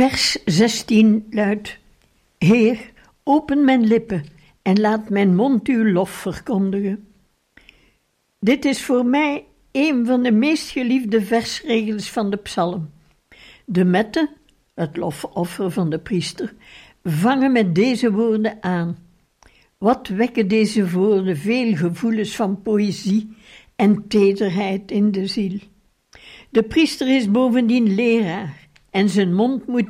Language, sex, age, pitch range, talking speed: Dutch, female, 60-79, 195-240 Hz, 120 wpm